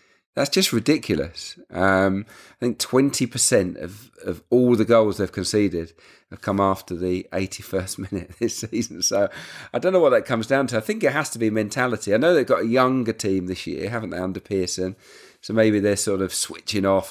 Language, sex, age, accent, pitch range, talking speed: English, male, 40-59, British, 95-125 Hz, 205 wpm